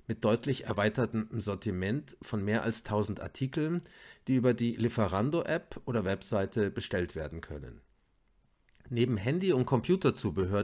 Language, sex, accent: German, male, German